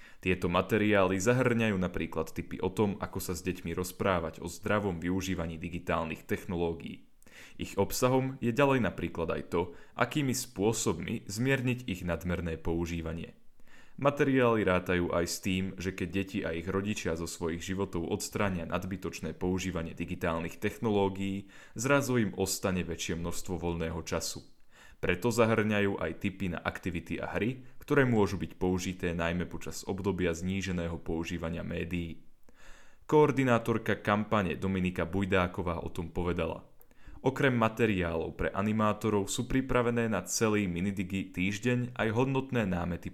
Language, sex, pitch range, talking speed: Slovak, male, 85-105 Hz, 130 wpm